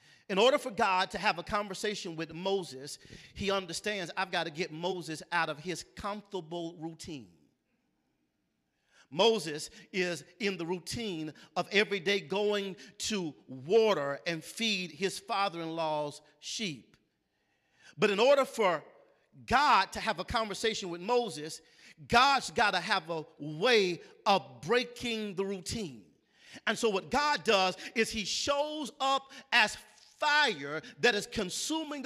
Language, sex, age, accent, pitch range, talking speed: English, male, 40-59, American, 180-245 Hz, 135 wpm